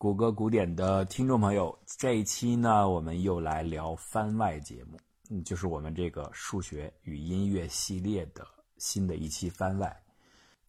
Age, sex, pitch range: 50-69, male, 80-100 Hz